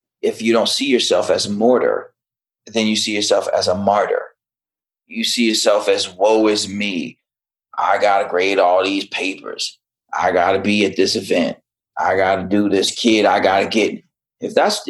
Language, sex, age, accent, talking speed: English, male, 30-49, American, 175 wpm